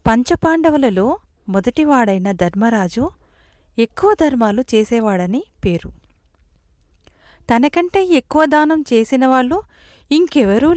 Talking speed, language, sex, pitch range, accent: 70 wpm, Telugu, female, 200-295 Hz, native